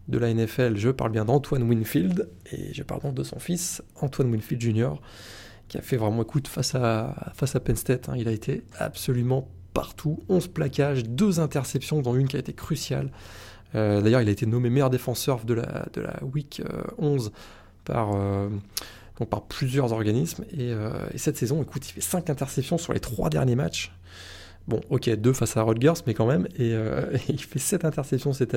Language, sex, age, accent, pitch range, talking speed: French, male, 20-39, French, 110-135 Hz, 205 wpm